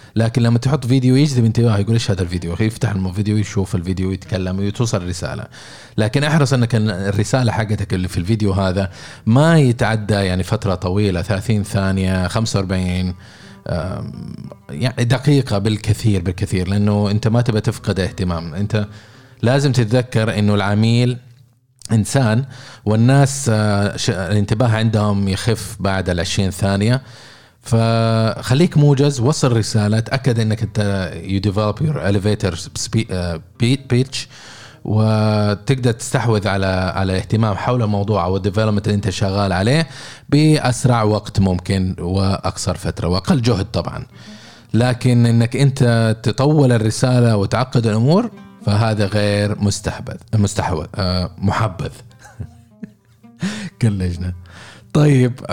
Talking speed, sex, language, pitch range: 110 wpm, male, Arabic, 100-125 Hz